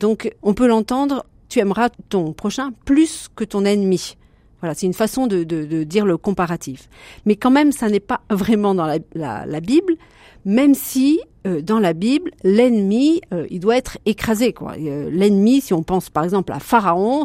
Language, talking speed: French, 205 wpm